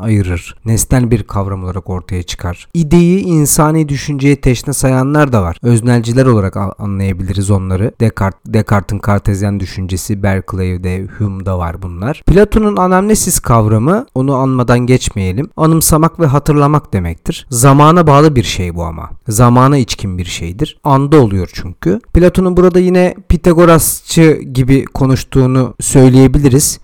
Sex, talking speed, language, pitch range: male, 125 wpm, Turkish, 100-155 Hz